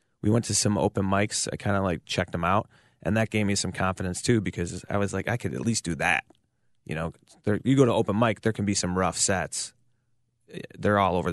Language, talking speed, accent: English, 245 wpm, American